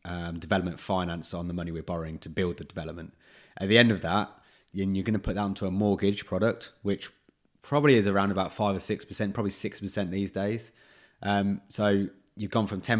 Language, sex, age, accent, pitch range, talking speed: English, male, 20-39, British, 90-105 Hz, 210 wpm